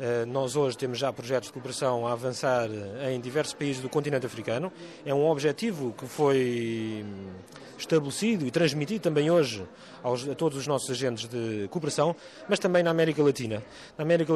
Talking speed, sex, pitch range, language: 165 wpm, male, 125-150 Hz, Portuguese